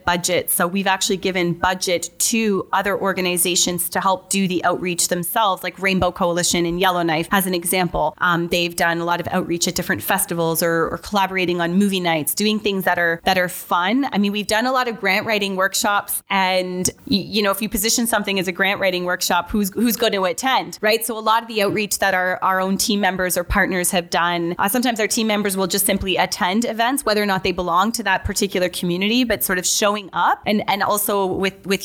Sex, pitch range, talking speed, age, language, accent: female, 180-215 Hz, 225 wpm, 20-39, English, American